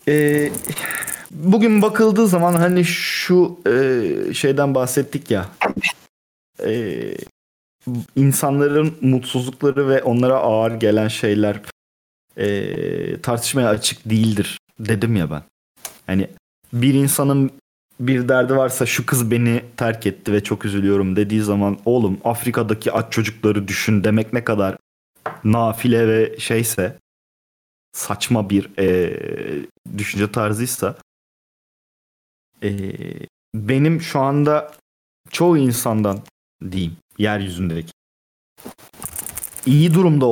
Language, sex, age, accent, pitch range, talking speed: Turkish, male, 30-49, native, 105-140 Hz, 95 wpm